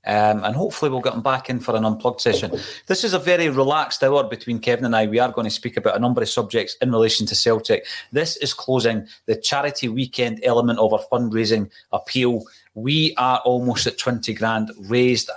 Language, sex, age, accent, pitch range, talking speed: English, male, 30-49, British, 110-140 Hz, 210 wpm